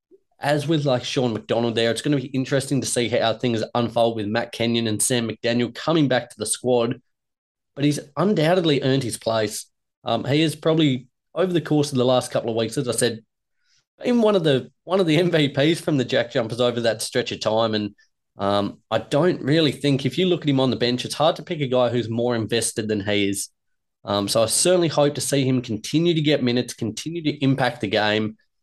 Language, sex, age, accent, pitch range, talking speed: English, male, 20-39, Australian, 115-145 Hz, 230 wpm